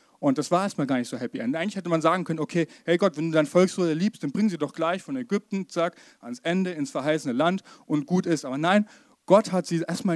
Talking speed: 260 wpm